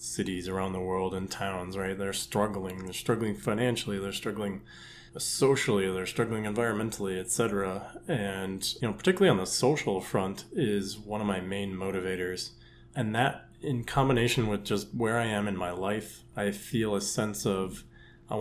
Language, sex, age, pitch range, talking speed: English, male, 20-39, 95-115 Hz, 165 wpm